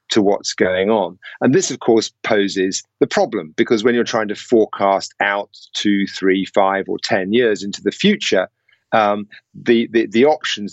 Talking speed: 180 wpm